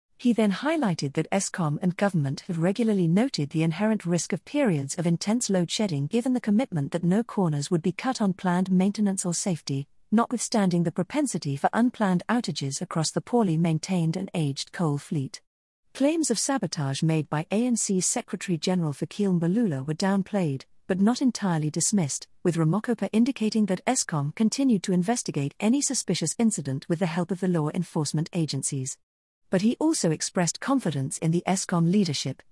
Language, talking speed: English, 165 wpm